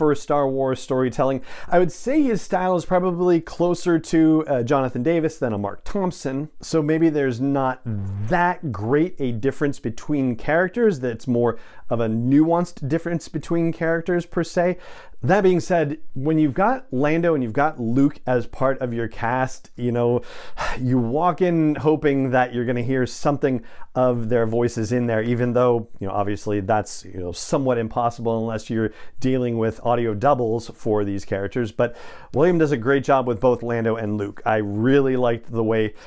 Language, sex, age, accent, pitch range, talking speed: English, male, 40-59, American, 115-150 Hz, 180 wpm